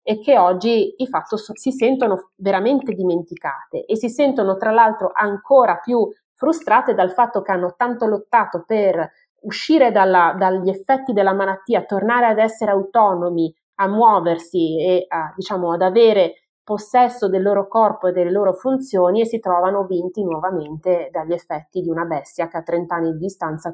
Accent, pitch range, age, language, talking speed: native, 185-235 Hz, 30-49, Italian, 165 wpm